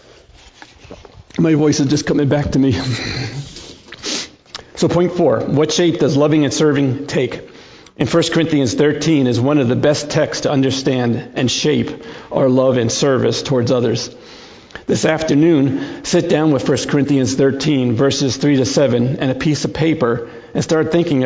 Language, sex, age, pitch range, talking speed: English, male, 50-69, 130-150 Hz, 165 wpm